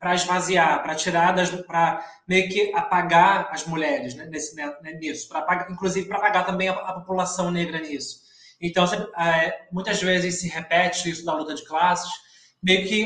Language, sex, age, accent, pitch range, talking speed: Portuguese, male, 20-39, Brazilian, 160-185 Hz, 175 wpm